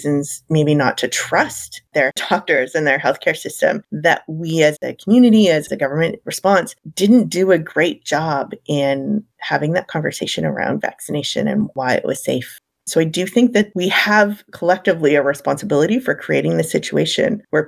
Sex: female